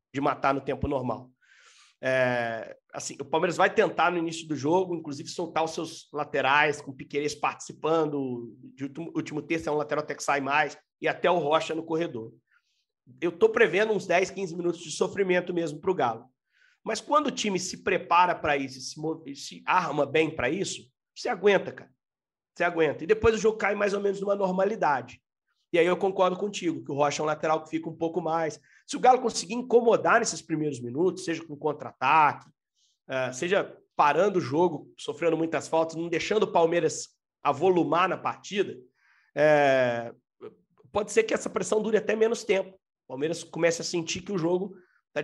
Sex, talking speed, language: male, 185 wpm, Portuguese